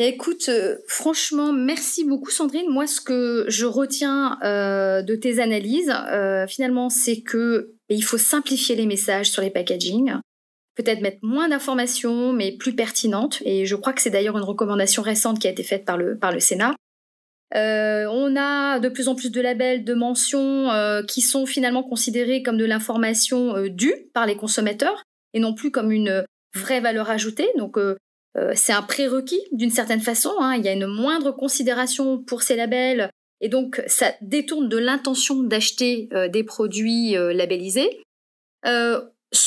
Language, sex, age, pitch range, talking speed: French, female, 30-49, 215-265 Hz, 170 wpm